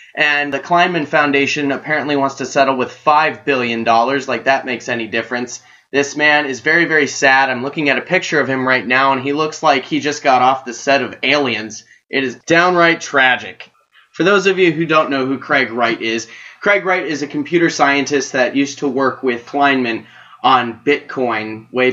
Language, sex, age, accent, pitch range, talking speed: English, male, 20-39, American, 130-160 Hz, 200 wpm